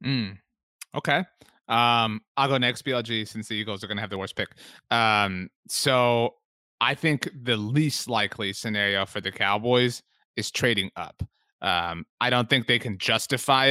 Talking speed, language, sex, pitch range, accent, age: 165 wpm, English, male, 110-130 Hz, American, 30-49